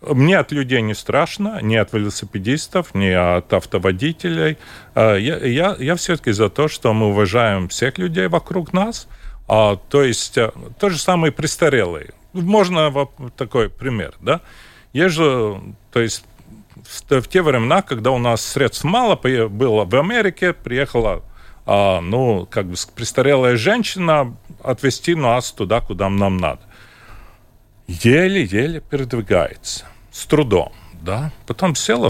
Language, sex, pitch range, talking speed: Russian, male, 110-155 Hz, 125 wpm